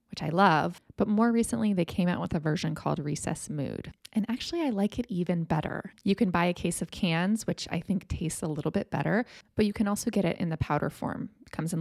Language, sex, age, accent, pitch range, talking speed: English, female, 20-39, American, 155-205 Hz, 255 wpm